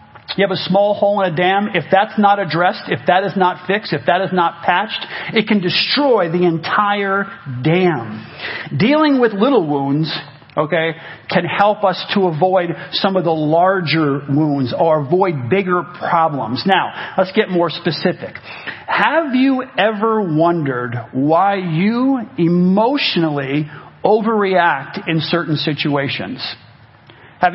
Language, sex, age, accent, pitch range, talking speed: English, male, 40-59, American, 160-200 Hz, 140 wpm